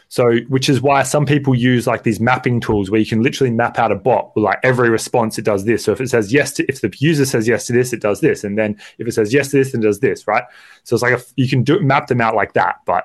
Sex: male